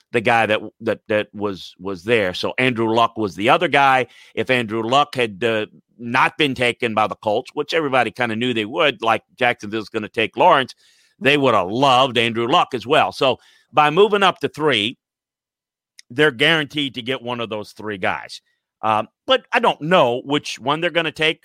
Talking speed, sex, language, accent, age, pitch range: 205 wpm, male, English, American, 50-69, 115-150 Hz